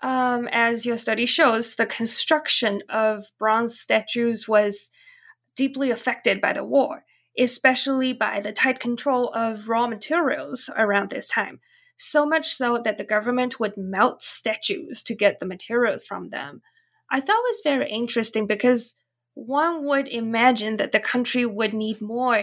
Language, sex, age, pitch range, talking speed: English, female, 20-39, 225-285 Hz, 155 wpm